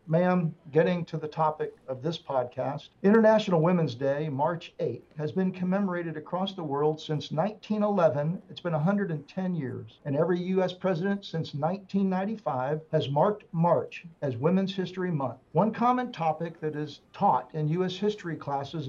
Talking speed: 155 wpm